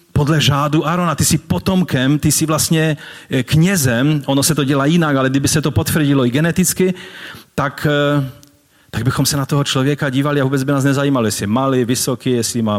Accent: native